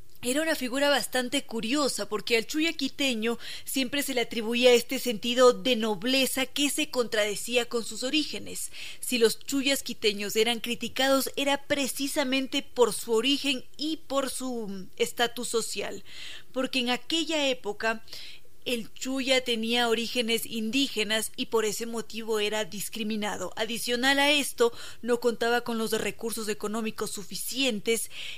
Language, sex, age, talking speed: Spanish, female, 20-39, 135 wpm